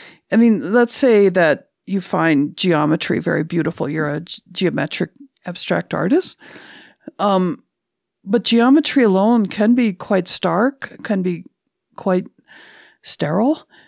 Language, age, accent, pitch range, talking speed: English, 50-69, American, 170-210 Hz, 120 wpm